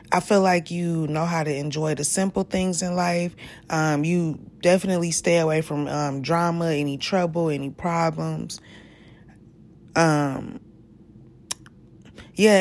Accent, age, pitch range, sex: American, 20-39, 150-185 Hz, female